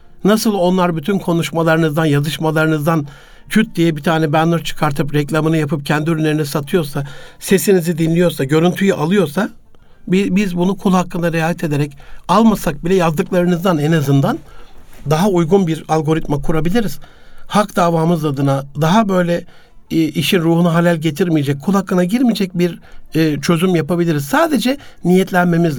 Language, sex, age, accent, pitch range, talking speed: Turkish, male, 60-79, native, 160-200 Hz, 125 wpm